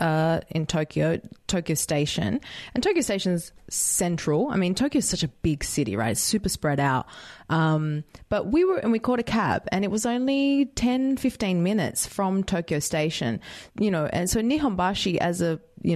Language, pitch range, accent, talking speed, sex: English, 155-220 Hz, Australian, 190 wpm, female